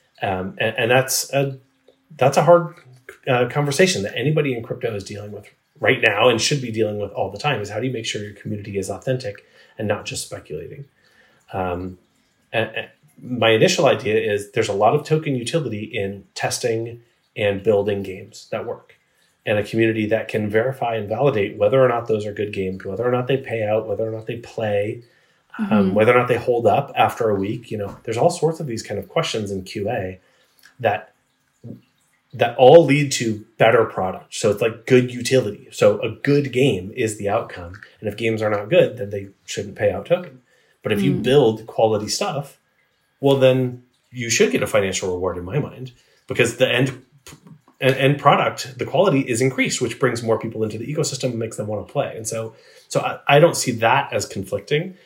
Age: 30-49